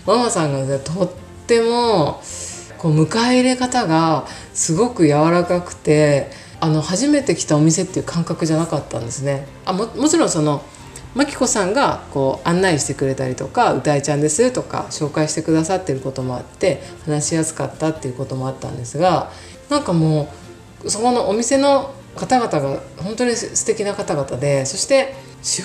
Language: Japanese